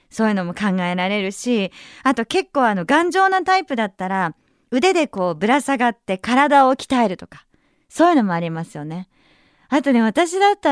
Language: Japanese